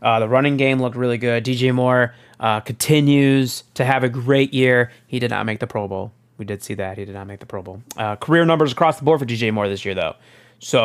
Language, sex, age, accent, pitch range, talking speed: English, male, 30-49, American, 115-145 Hz, 260 wpm